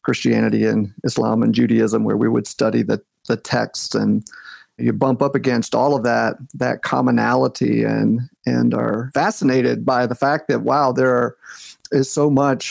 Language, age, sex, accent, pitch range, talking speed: English, 40-59, male, American, 115-150 Hz, 170 wpm